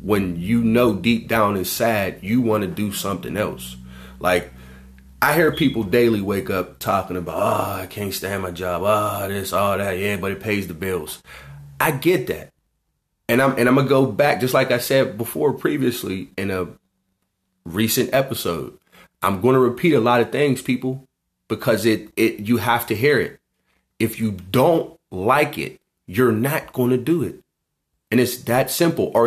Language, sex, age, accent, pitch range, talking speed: English, male, 30-49, American, 100-145 Hz, 180 wpm